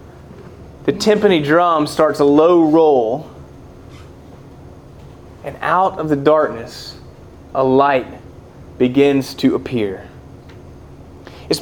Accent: American